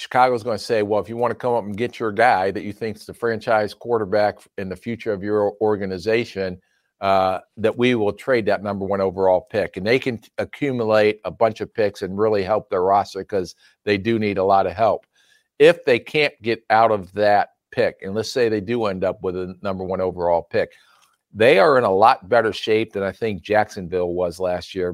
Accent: American